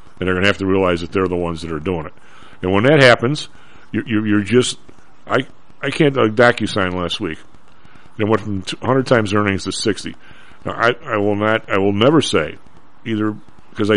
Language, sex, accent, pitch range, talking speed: English, male, American, 95-125 Hz, 215 wpm